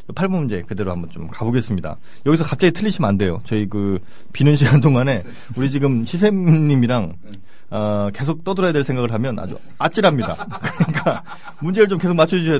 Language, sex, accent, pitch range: Korean, male, native, 105-150 Hz